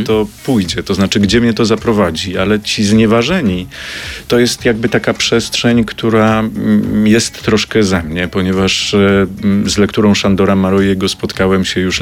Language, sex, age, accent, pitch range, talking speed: Polish, male, 30-49, native, 90-110 Hz, 145 wpm